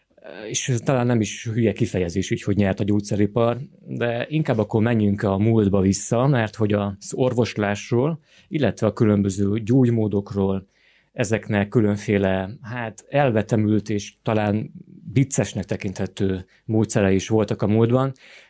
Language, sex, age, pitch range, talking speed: Hungarian, male, 30-49, 100-120 Hz, 120 wpm